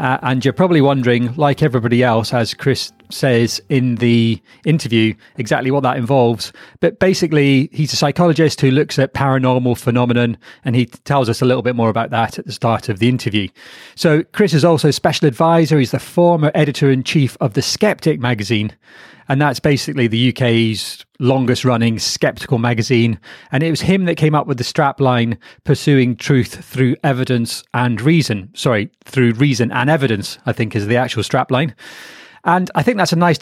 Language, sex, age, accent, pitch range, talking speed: English, male, 30-49, British, 120-155 Hz, 185 wpm